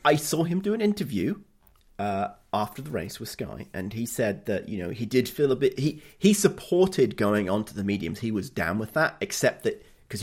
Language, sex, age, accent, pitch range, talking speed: English, male, 30-49, British, 100-135 Hz, 230 wpm